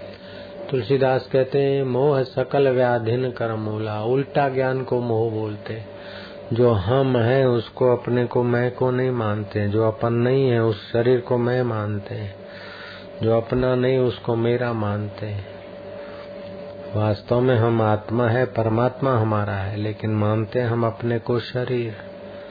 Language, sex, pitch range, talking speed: Hindi, male, 110-125 Hz, 140 wpm